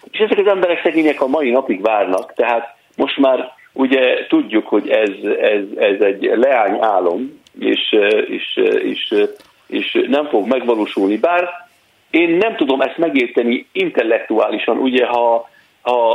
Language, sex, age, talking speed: Hungarian, male, 50-69, 140 wpm